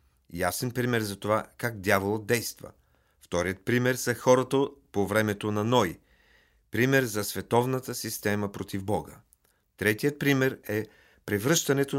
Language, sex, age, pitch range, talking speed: Bulgarian, male, 40-59, 100-130 Hz, 125 wpm